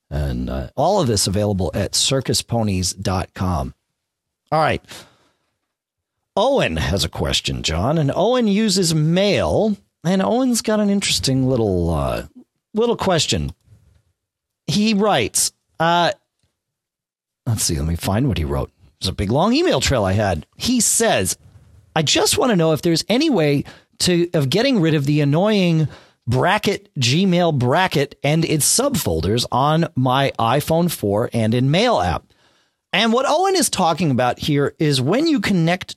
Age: 40-59